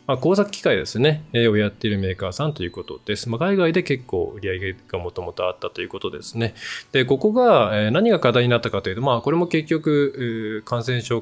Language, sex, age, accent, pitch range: Japanese, male, 20-39, native, 110-160 Hz